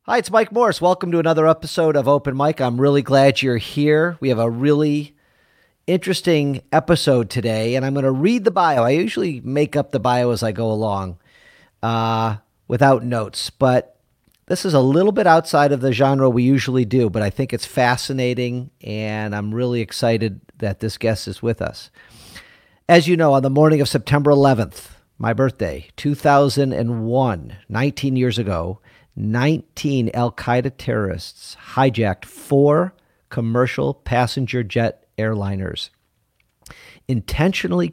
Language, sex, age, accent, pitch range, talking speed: English, male, 40-59, American, 110-145 Hz, 150 wpm